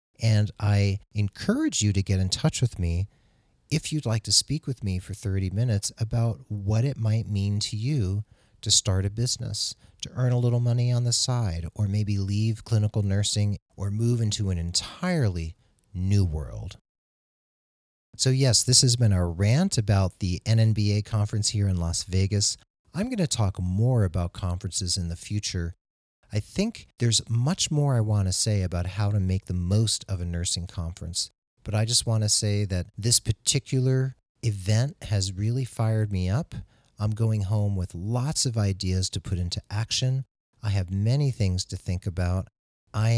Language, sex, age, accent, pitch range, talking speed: English, male, 40-59, American, 95-115 Hz, 180 wpm